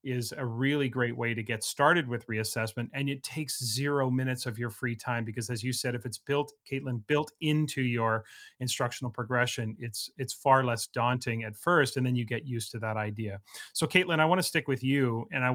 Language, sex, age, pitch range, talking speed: English, male, 30-49, 120-145 Hz, 215 wpm